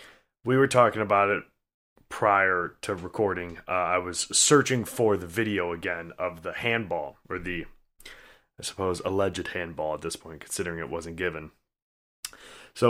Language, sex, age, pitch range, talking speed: English, male, 20-39, 100-125 Hz, 155 wpm